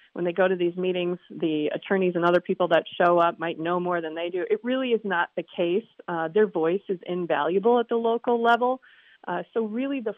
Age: 30-49